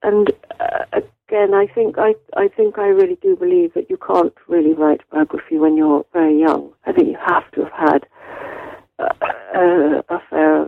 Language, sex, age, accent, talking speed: English, female, 50-69, British, 180 wpm